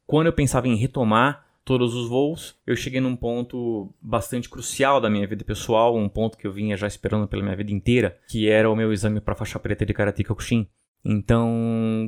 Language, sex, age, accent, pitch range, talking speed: English, male, 20-39, Brazilian, 110-130 Hz, 210 wpm